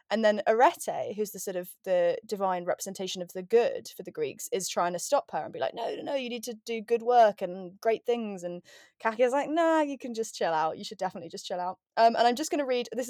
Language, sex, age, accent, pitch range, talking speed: English, female, 20-39, British, 195-250 Hz, 280 wpm